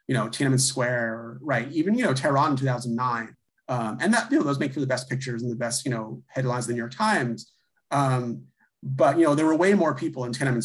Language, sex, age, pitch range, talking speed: English, male, 30-49, 120-160 Hz, 260 wpm